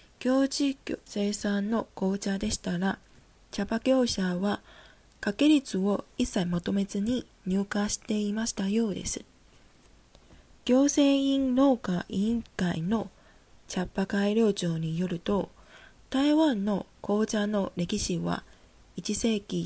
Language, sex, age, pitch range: Japanese, female, 20-39, 190-240 Hz